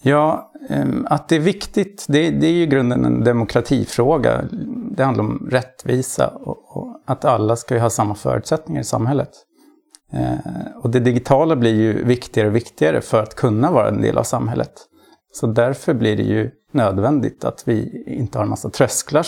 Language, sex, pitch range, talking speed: Swedish, male, 120-150 Hz, 165 wpm